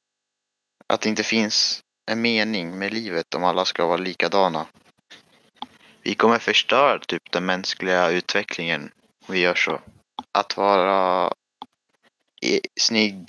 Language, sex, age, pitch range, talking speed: Swedish, male, 30-49, 90-105 Hz, 120 wpm